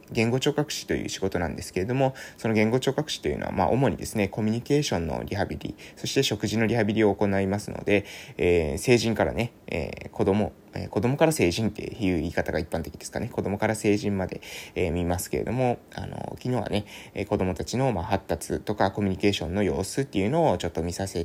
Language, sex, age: Japanese, male, 20-39